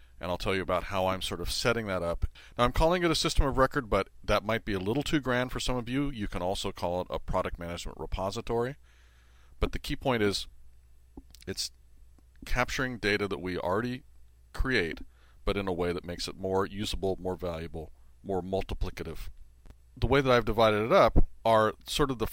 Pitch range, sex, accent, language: 70-115 Hz, male, American, English